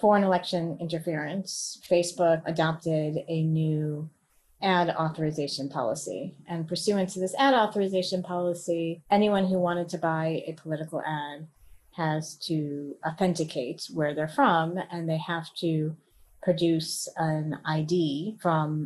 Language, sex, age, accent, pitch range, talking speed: English, female, 30-49, American, 155-185 Hz, 125 wpm